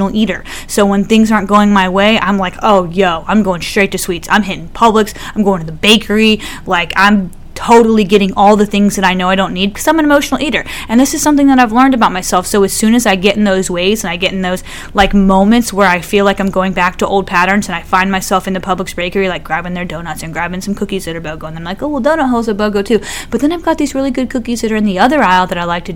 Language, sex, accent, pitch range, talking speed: English, female, American, 190-230 Hz, 290 wpm